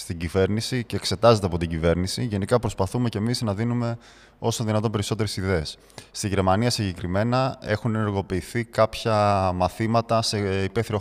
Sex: male